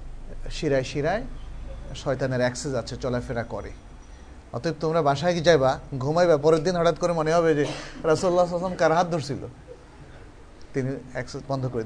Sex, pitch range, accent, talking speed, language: male, 130-170 Hz, native, 135 wpm, Bengali